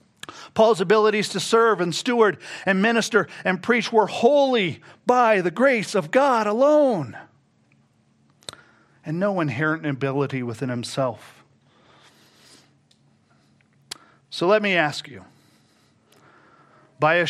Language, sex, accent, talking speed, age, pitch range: English, male, American, 110 wpm, 40-59, 155-210 Hz